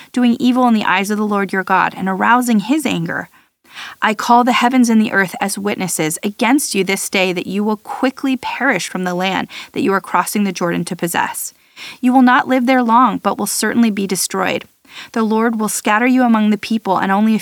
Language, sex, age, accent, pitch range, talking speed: English, female, 30-49, American, 195-240 Hz, 225 wpm